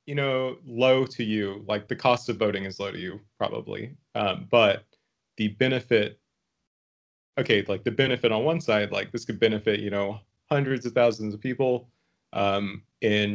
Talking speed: 175 wpm